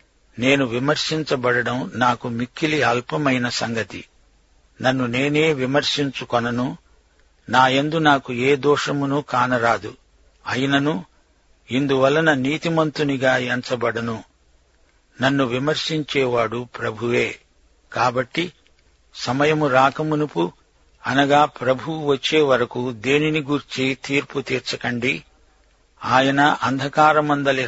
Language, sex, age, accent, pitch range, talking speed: Telugu, male, 60-79, native, 120-145 Hz, 70 wpm